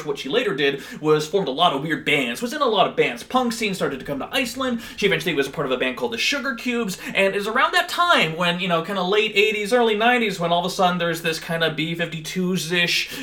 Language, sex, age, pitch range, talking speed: English, male, 30-49, 165-235 Hz, 275 wpm